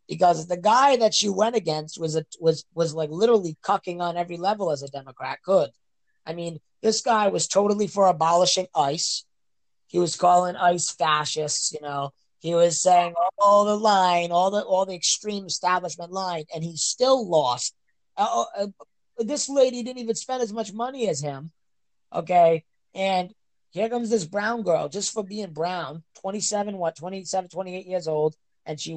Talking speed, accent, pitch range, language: 180 wpm, American, 160-205 Hz, English